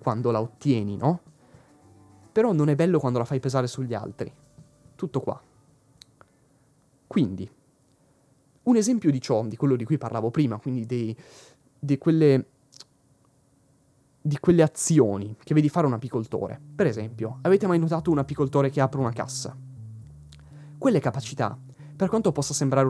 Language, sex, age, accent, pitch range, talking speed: Italian, male, 20-39, native, 125-150 Hz, 145 wpm